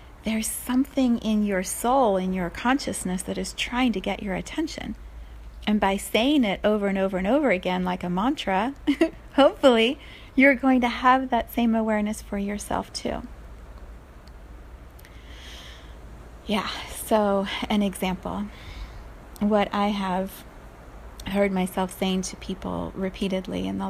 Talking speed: 135 wpm